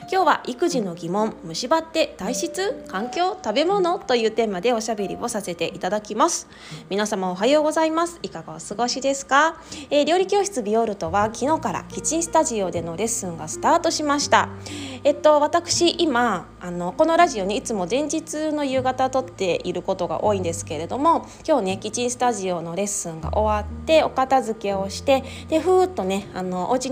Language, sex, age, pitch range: Japanese, female, 20-39, 190-310 Hz